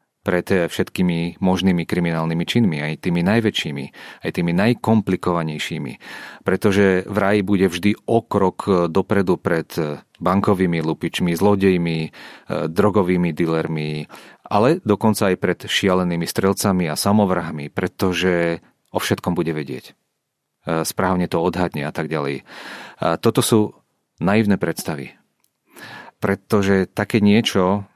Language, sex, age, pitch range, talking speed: Czech, male, 40-59, 85-100 Hz, 110 wpm